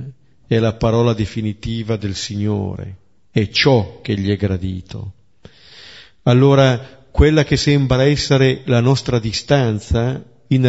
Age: 50-69